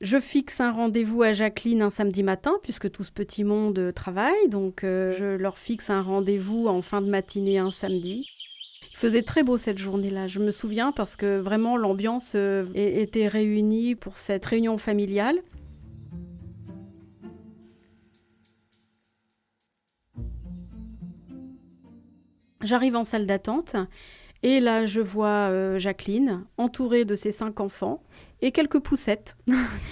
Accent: French